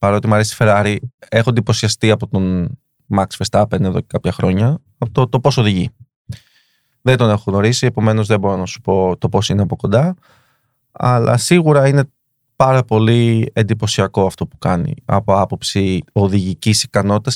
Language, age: Greek, 20-39